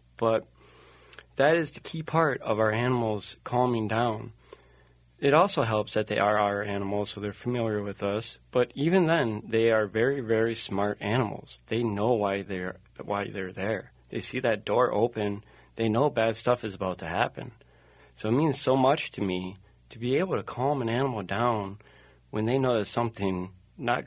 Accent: American